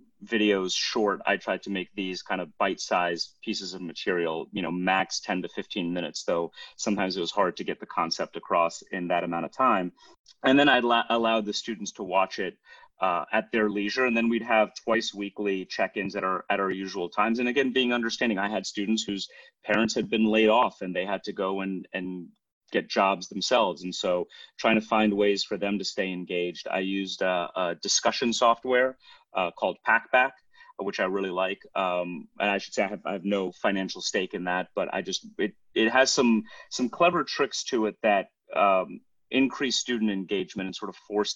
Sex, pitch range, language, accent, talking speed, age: male, 95-115 Hz, English, American, 210 wpm, 30-49